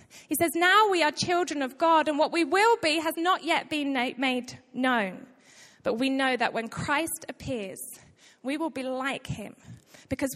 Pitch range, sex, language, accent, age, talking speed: 260-330 Hz, female, English, British, 20-39, 185 wpm